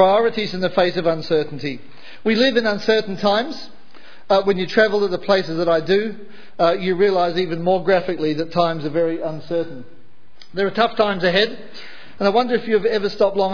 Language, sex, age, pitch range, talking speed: English, male, 40-59, 170-215 Hz, 200 wpm